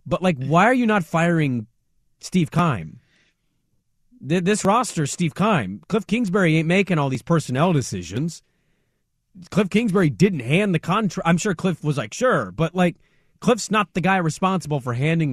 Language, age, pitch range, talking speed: English, 30-49, 140-195 Hz, 170 wpm